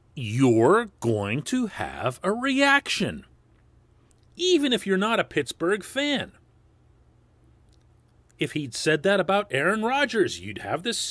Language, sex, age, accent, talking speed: English, male, 40-59, American, 125 wpm